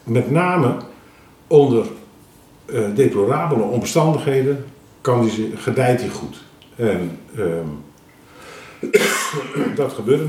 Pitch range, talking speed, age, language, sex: 100-140 Hz, 80 wpm, 50-69, Dutch, male